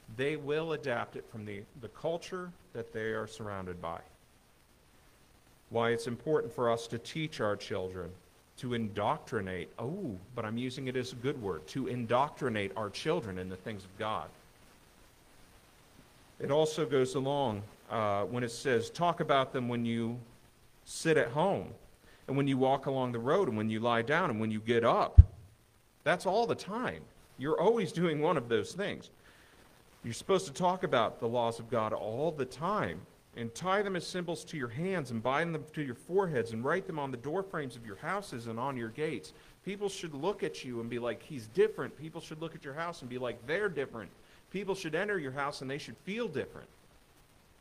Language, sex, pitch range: English, male, 115-160 Hz